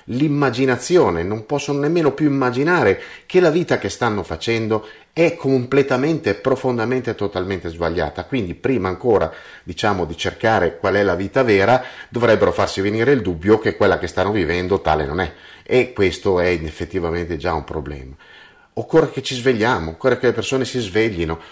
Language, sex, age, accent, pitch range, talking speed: Italian, male, 30-49, native, 95-130 Hz, 160 wpm